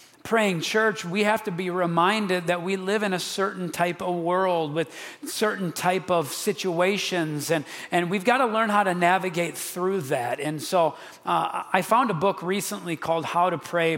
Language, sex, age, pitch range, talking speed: English, male, 40-59, 155-180 Hz, 190 wpm